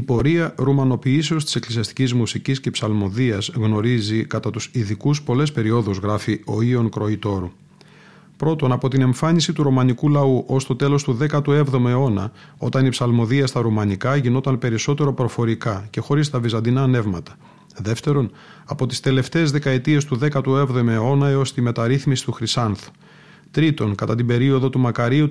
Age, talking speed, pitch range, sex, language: 30-49, 150 wpm, 115-145 Hz, male, Greek